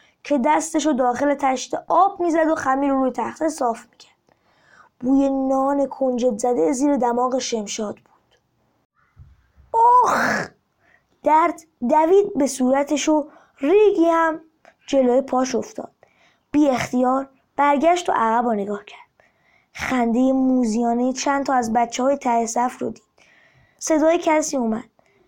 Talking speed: 130 wpm